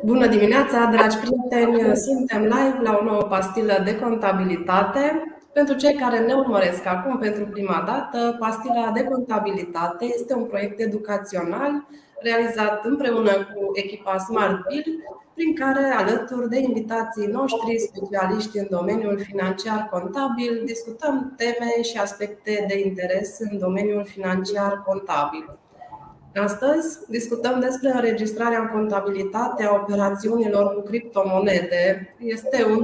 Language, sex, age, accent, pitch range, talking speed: Romanian, female, 20-39, native, 195-235 Hz, 120 wpm